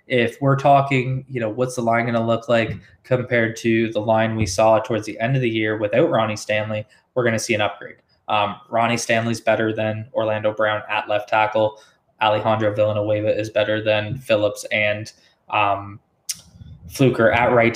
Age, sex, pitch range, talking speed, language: 20-39, male, 110-120 Hz, 175 wpm, English